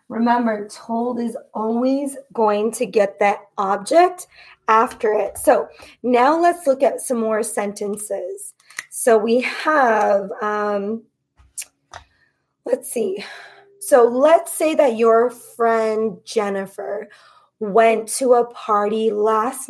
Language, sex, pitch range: English, female, 215-290 Hz